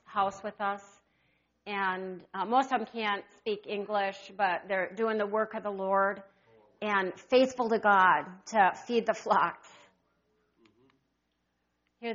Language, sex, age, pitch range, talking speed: English, female, 50-69, 195-230 Hz, 140 wpm